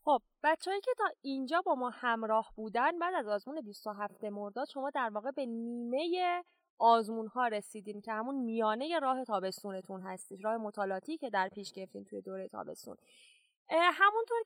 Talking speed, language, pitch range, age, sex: 160 wpm, Persian, 220-315 Hz, 20-39, female